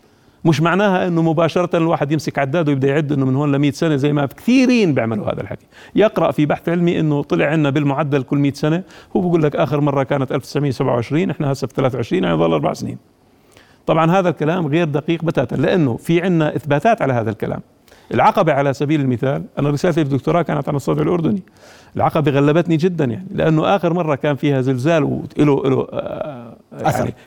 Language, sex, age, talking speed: Arabic, male, 50-69, 185 wpm